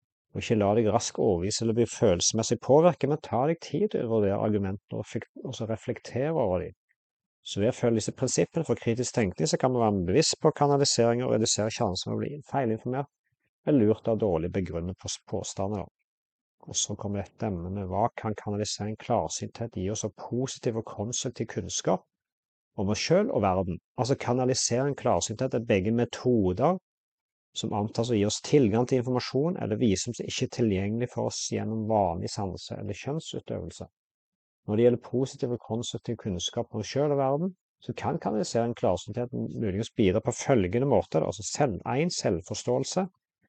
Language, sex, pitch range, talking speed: English, male, 105-130 Hz, 175 wpm